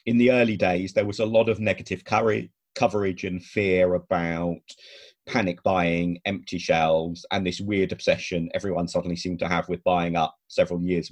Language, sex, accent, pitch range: English, male, British, 90-120 Hz